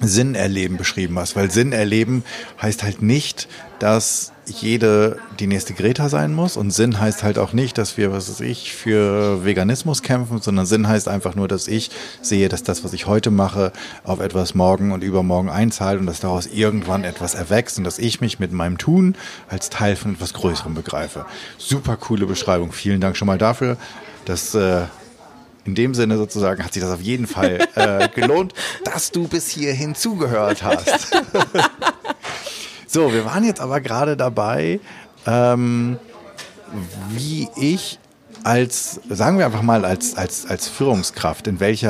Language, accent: German, German